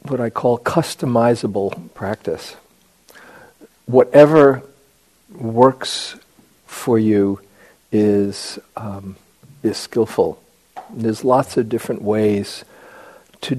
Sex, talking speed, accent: male, 85 wpm, American